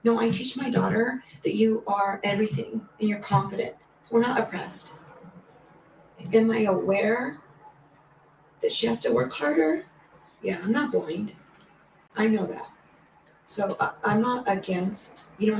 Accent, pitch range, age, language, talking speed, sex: American, 160-215 Hz, 40-59, English, 140 wpm, female